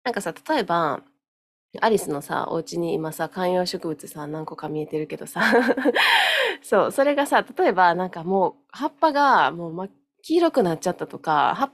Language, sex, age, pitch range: Japanese, female, 20-39, 170-275 Hz